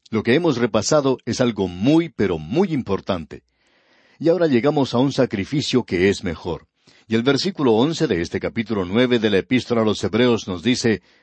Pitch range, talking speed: 110-145 Hz, 185 wpm